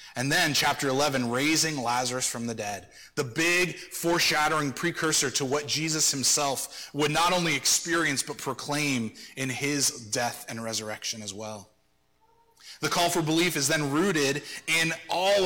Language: English